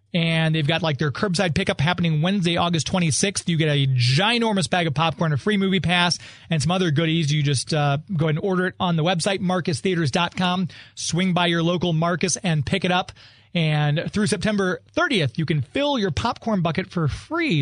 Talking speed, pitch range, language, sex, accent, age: 200 wpm, 155-200 Hz, English, male, American, 30-49